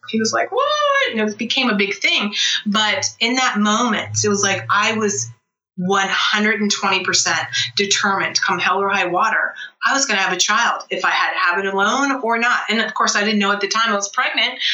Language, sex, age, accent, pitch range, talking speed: English, female, 30-49, American, 185-225 Hz, 220 wpm